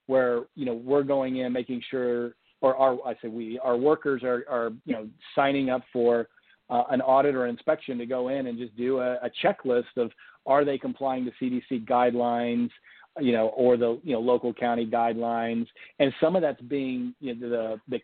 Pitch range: 120-135 Hz